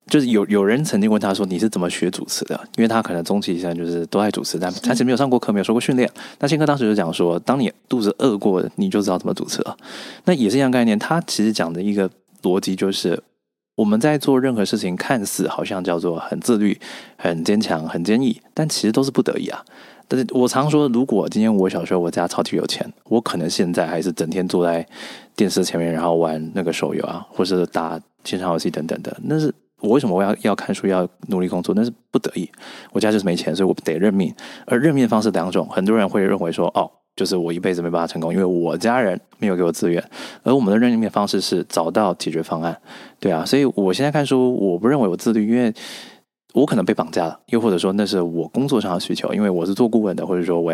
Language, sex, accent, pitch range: Chinese, male, native, 85-120 Hz